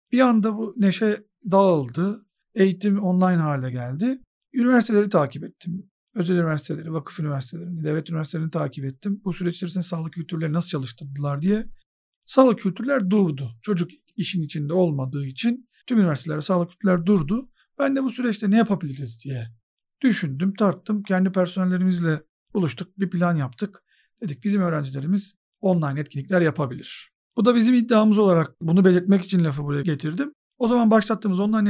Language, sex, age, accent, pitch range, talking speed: Turkish, male, 50-69, native, 155-200 Hz, 145 wpm